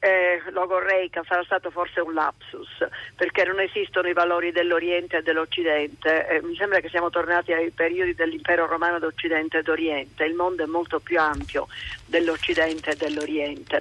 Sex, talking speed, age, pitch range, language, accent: female, 160 wpm, 40-59, 170-220 Hz, Italian, native